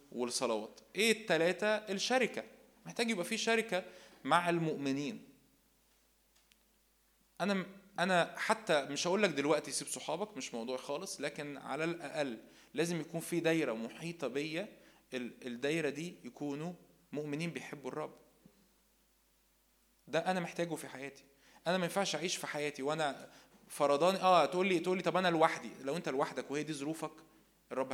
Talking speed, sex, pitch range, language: 140 wpm, male, 140-180 Hz, Arabic